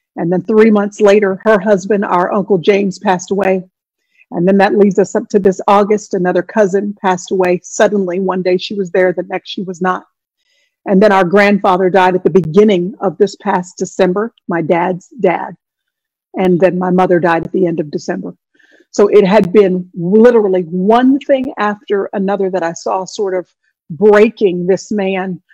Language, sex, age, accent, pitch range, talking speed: English, female, 50-69, American, 185-225 Hz, 185 wpm